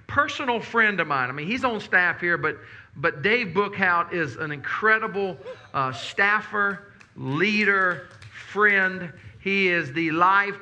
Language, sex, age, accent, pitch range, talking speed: English, male, 40-59, American, 140-195 Hz, 140 wpm